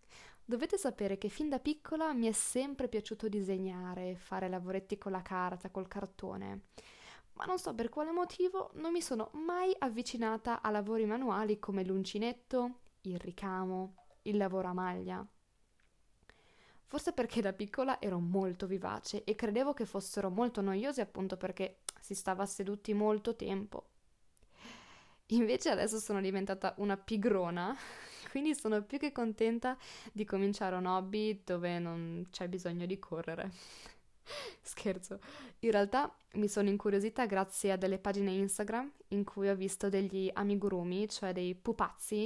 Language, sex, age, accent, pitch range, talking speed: Italian, female, 20-39, native, 190-235 Hz, 145 wpm